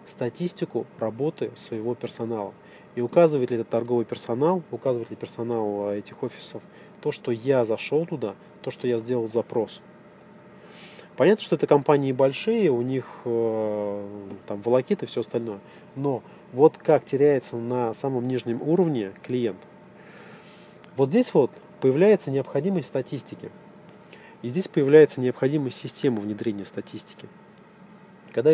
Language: Russian